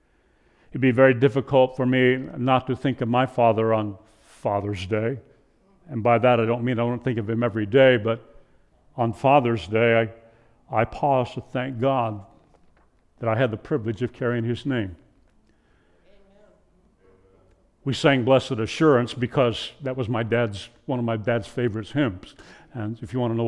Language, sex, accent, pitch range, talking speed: English, male, American, 115-130 Hz, 175 wpm